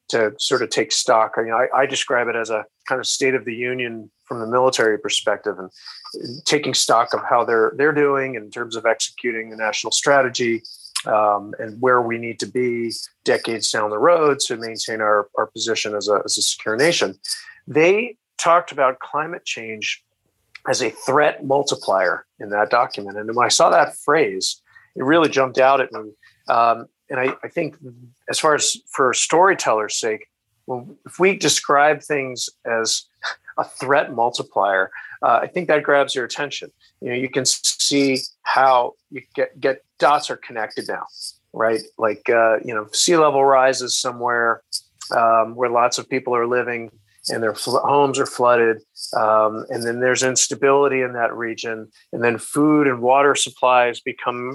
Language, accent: English, American